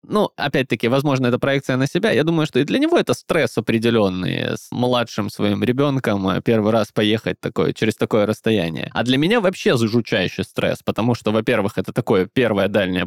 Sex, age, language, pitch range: male, 20-39, Russian, 110-140 Hz